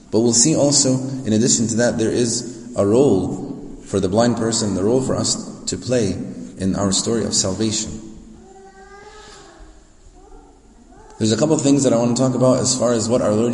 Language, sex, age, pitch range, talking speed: English, male, 30-49, 110-130 Hz, 195 wpm